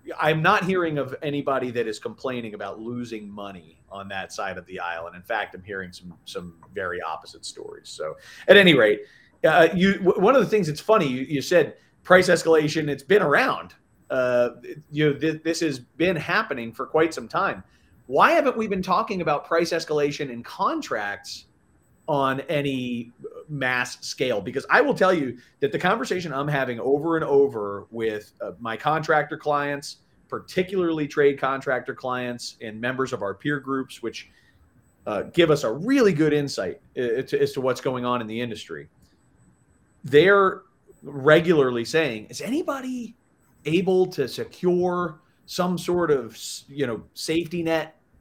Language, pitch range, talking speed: English, 125-175 Hz, 165 wpm